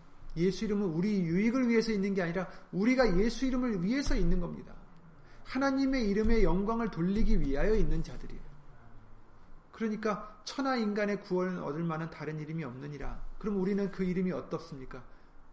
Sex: male